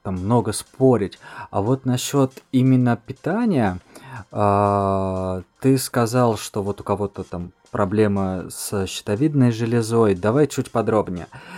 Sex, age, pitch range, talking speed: male, 20-39, 95-120 Hz, 120 wpm